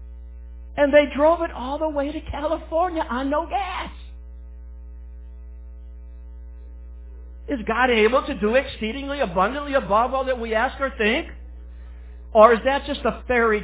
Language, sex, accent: English, male, American